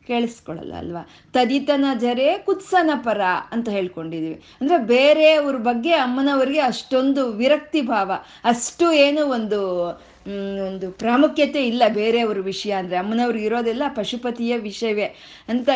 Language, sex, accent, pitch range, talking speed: Kannada, female, native, 210-275 Hz, 110 wpm